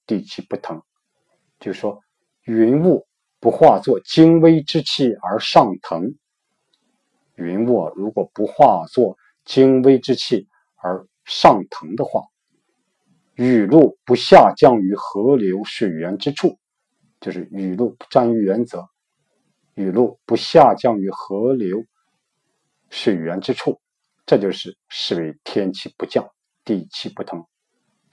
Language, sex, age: Chinese, male, 50-69